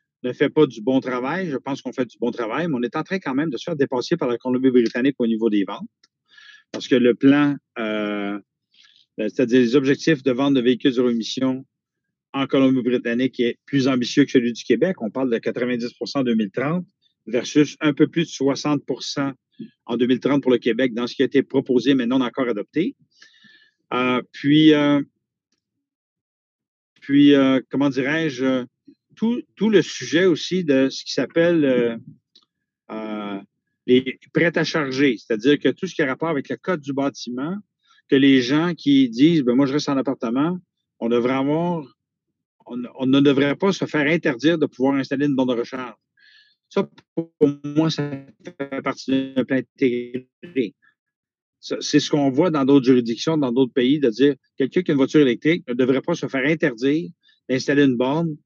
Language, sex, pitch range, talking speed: French, male, 125-155 Hz, 185 wpm